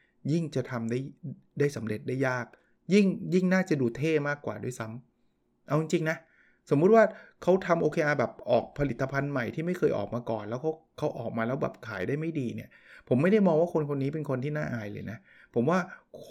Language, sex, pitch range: Thai, male, 120-155 Hz